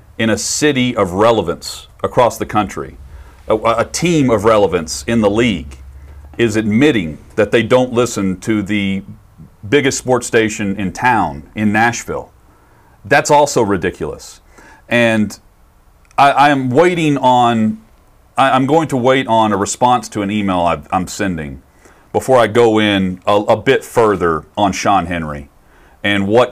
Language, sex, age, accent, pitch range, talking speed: English, male, 40-59, American, 90-120 Hz, 145 wpm